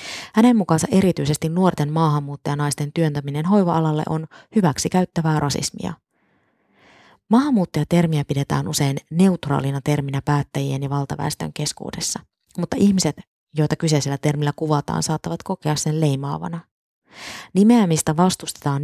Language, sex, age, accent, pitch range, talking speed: Finnish, female, 20-39, native, 145-170 Hz, 100 wpm